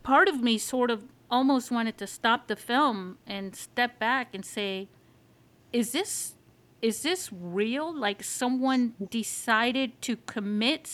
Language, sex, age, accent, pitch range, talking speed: English, female, 50-69, American, 210-255 Hz, 145 wpm